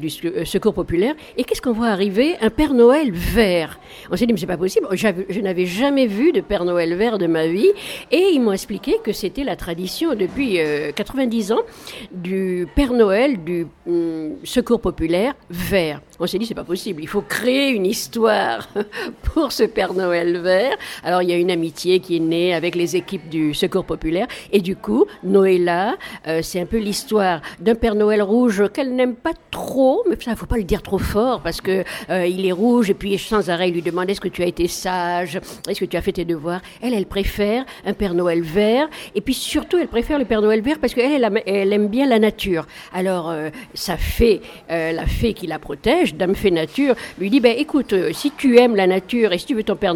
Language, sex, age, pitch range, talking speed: French, female, 50-69, 175-230 Hz, 225 wpm